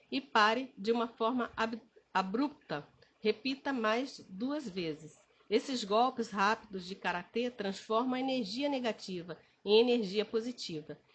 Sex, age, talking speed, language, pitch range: female, 40-59, 120 wpm, Portuguese, 200-250 Hz